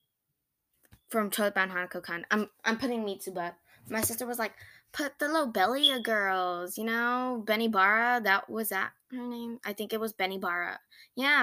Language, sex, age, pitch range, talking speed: English, female, 10-29, 180-260 Hz, 175 wpm